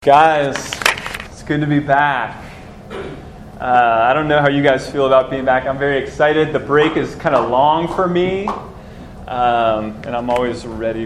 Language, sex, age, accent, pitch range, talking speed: English, male, 20-39, American, 120-150 Hz, 180 wpm